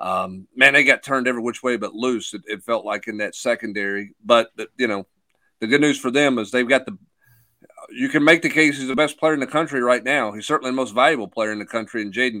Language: English